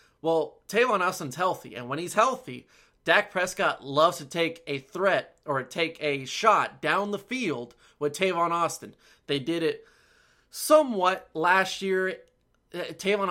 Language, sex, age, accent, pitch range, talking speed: English, male, 30-49, American, 145-175 Hz, 145 wpm